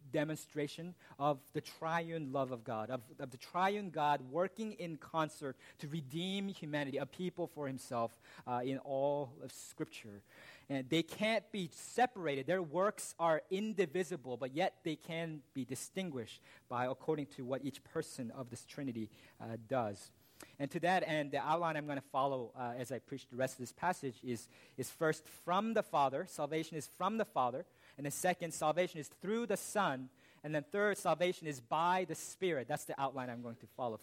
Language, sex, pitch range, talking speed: English, male, 140-185 Hz, 185 wpm